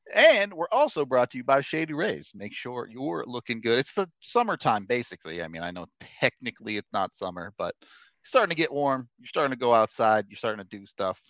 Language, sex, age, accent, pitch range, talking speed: English, male, 30-49, American, 105-140 Hz, 225 wpm